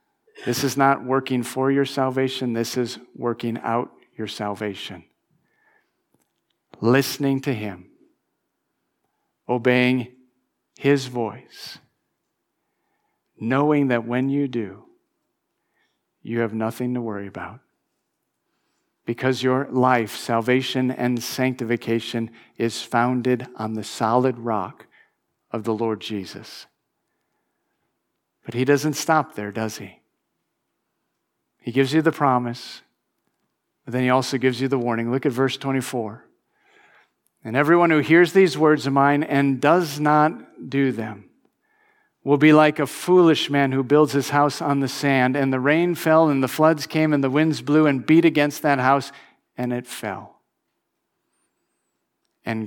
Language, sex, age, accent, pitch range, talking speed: English, male, 50-69, American, 115-140 Hz, 135 wpm